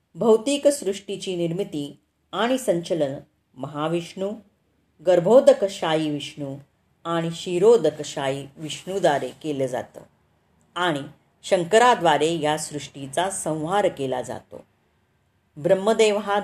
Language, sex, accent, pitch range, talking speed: Marathi, female, native, 145-195 Hz, 80 wpm